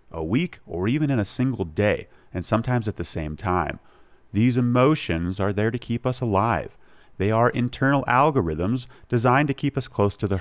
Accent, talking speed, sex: American, 190 wpm, male